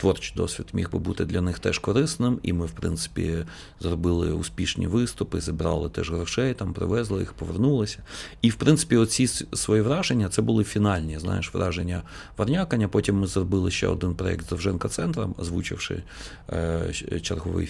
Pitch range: 90-110 Hz